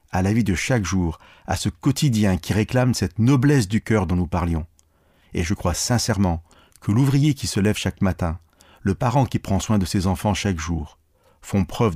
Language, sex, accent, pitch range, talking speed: French, male, French, 90-110 Hz, 205 wpm